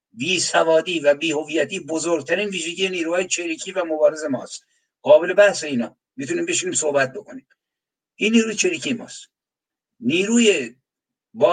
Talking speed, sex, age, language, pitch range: 130 wpm, male, 60-79, Persian, 155-205 Hz